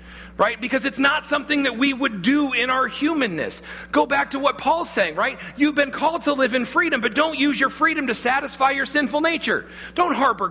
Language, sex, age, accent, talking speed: English, male, 40-59, American, 215 wpm